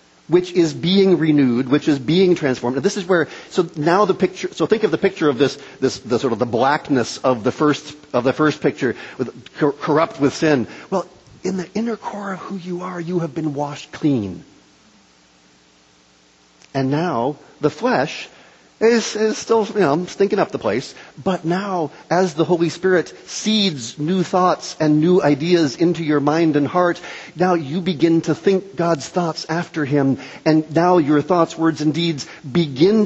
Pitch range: 130-175 Hz